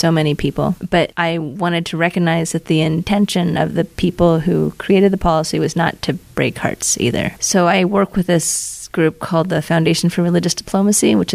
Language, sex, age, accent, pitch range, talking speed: English, female, 30-49, American, 155-180 Hz, 195 wpm